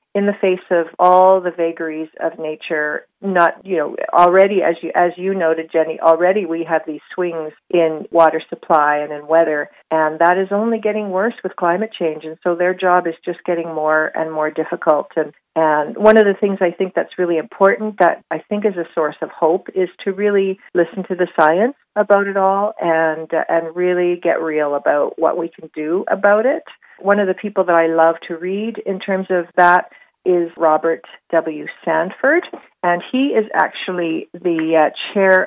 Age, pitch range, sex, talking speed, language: 50-69, 165-195 Hz, female, 195 wpm, English